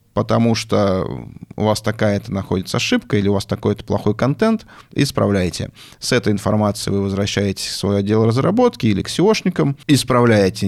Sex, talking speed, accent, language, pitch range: male, 150 wpm, native, Russian, 105-130 Hz